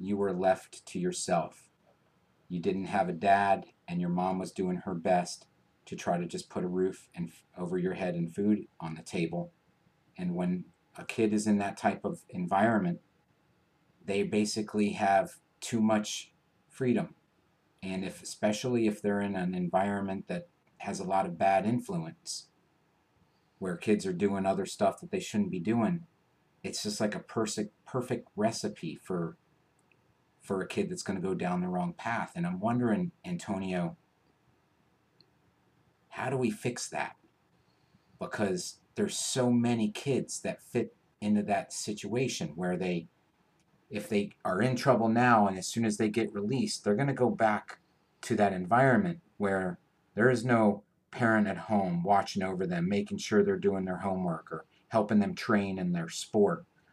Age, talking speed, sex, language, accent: 40-59, 165 wpm, male, English, American